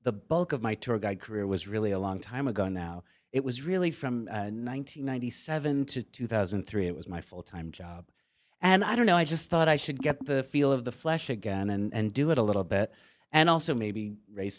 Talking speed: 220 wpm